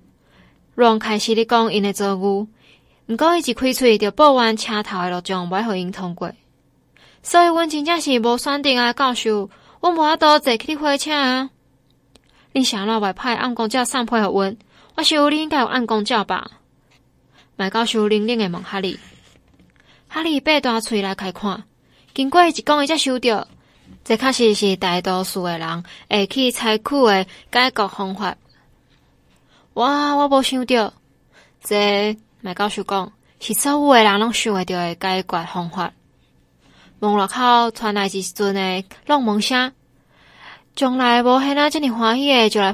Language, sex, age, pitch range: Chinese, female, 20-39, 195-255 Hz